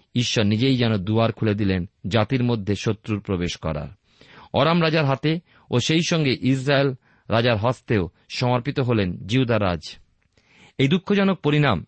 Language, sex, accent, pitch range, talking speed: Bengali, male, native, 105-135 Hz, 130 wpm